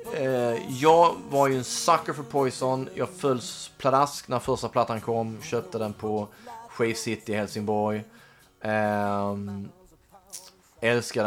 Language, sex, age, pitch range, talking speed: Swedish, male, 30-49, 95-115 Hz, 130 wpm